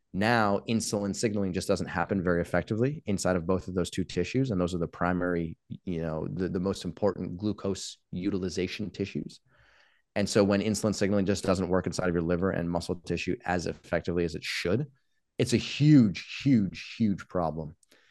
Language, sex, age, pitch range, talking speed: English, male, 30-49, 90-105 Hz, 180 wpm